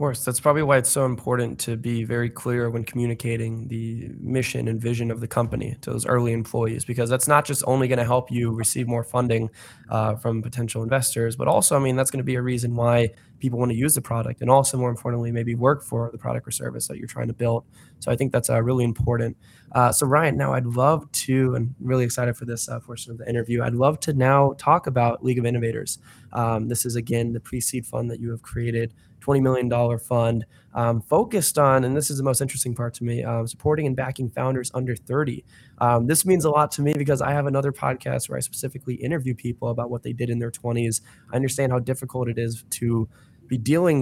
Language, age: English, 10-29